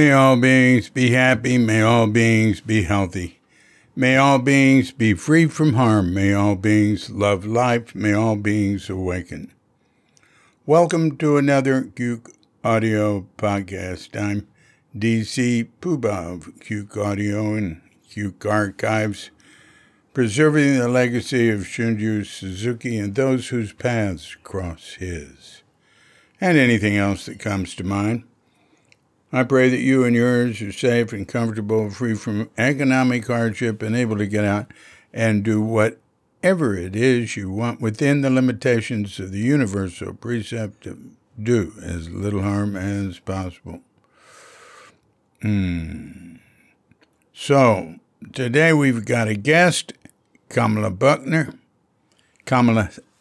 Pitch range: 100-130 Hz